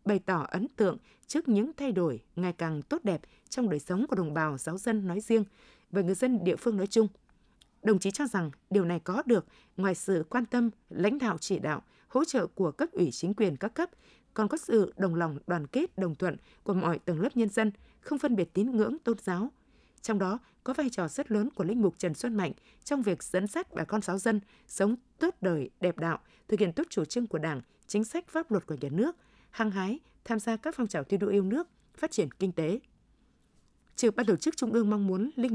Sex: female